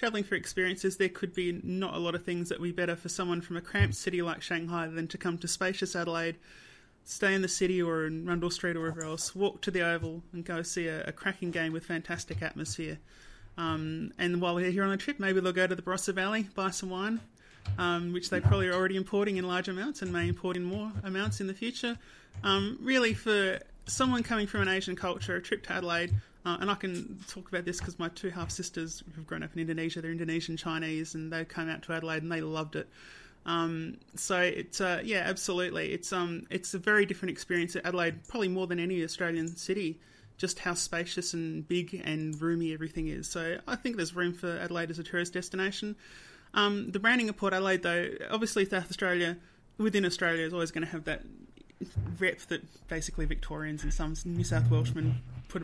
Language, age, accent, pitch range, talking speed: English, 30-49, Australian, 165-190 Hz, 220 wpm